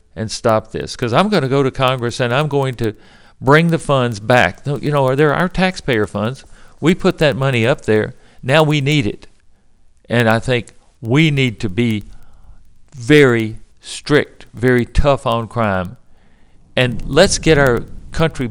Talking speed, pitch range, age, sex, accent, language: 170 wpm, 110-150 Hz, 50-69, male, American, English